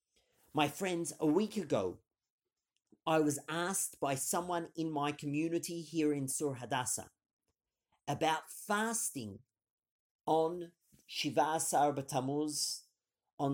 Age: 40-59